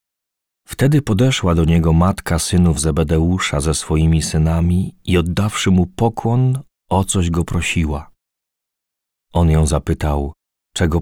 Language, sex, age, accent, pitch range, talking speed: Polish, male, 40-59, native, 80-95 Hz, 120 wpm